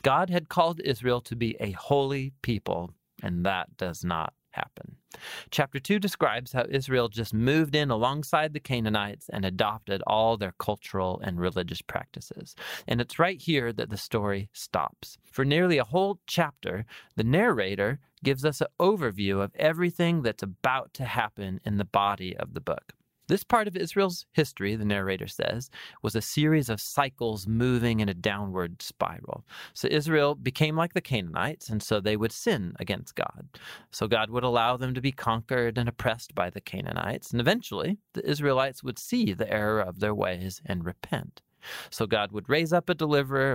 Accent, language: American, English